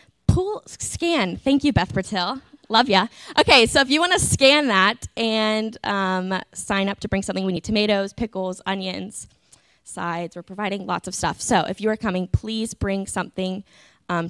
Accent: American